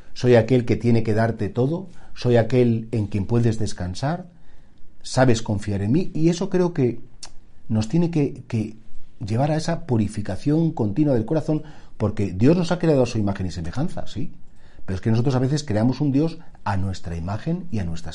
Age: 40-59